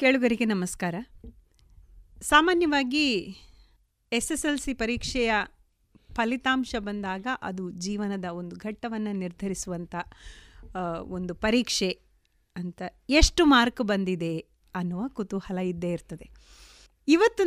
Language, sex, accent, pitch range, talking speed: Kannada, female, native, 185-260 Hz, 90 wpm